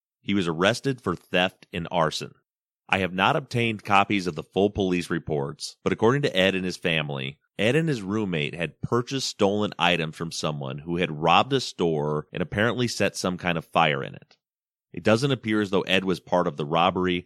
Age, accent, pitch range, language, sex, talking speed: 30-49, American, 80-100 Hz, English, male, 205 wpm